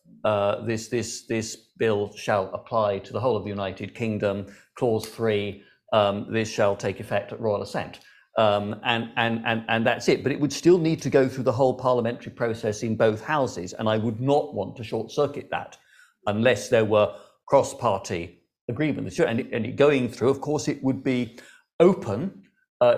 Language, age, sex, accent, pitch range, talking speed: English, 50-69, male, British, 110-145 Hz, 195 wpm